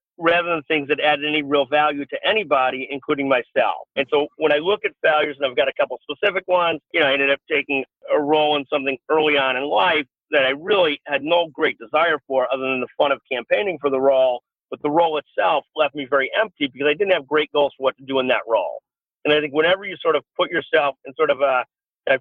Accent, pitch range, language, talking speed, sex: American, 140-170 Hz, English, 250 wpm, male